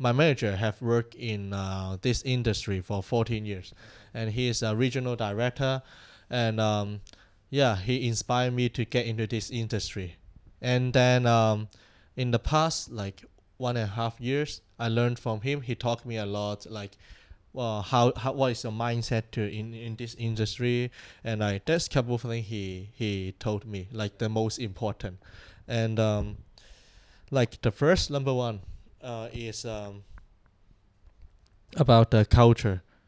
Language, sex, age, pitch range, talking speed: English, male, 20-39, 100-120 Hz, 160 wpm